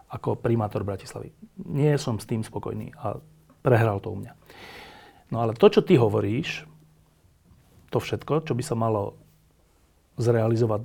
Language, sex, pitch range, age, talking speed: Slovak, male, 110-145 Hz, 40-59, 145 wpm